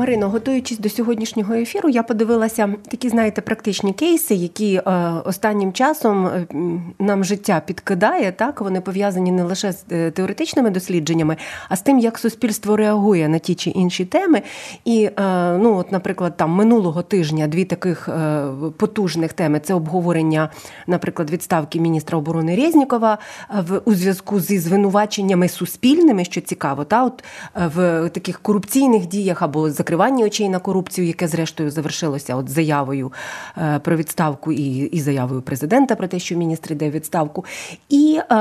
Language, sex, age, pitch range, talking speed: Ukrainian, female, 30-49, 165-215 Hz, 150 wpm